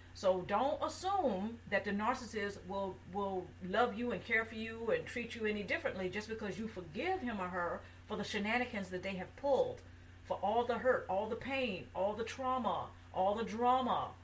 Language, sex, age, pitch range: English, female, 50-69, 185-250 Hz